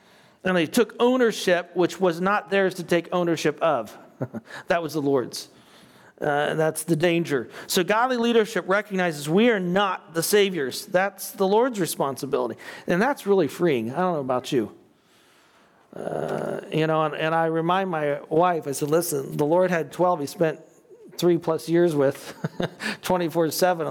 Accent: American